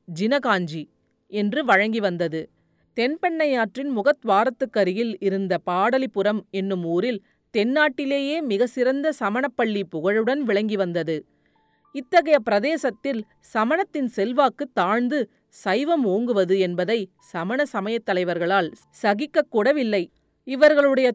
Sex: female